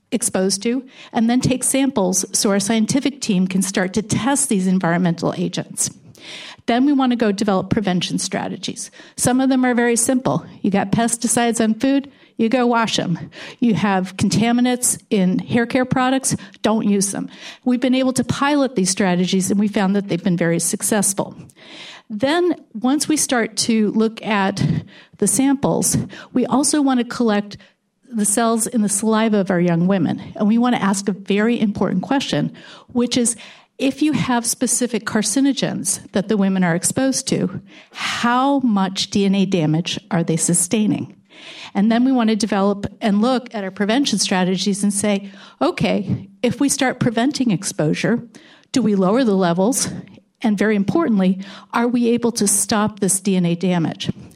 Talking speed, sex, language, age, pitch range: 170 wpm, female, English, 50-69, 195-245 Hz